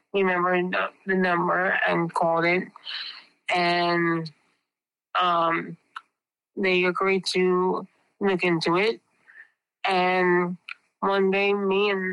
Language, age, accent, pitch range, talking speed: English, 30-49, American, 170-185 Hz, 95 wpm